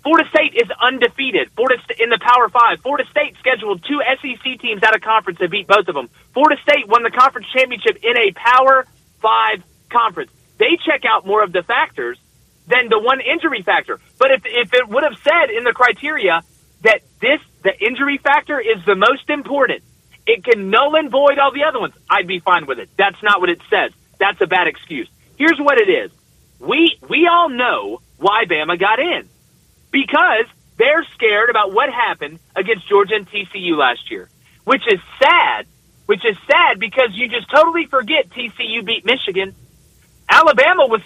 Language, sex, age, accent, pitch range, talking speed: English, male, 30-49, American, 230-310 Hz, 185 wpm